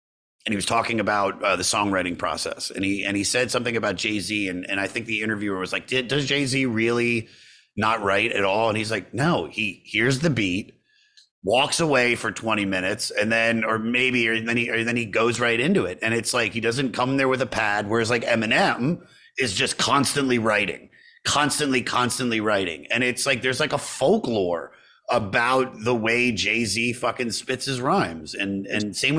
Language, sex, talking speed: English, male, 200 wpm